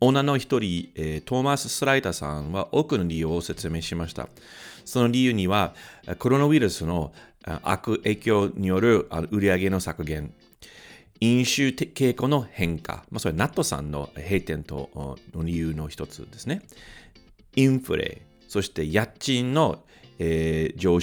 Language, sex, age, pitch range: Japanese, male, 40-59, 90-135 Hz